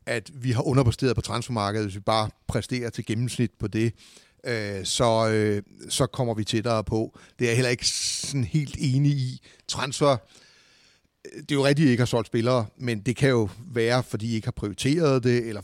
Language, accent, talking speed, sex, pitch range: Danish, native, 200 wpm, male, 110-135 Hz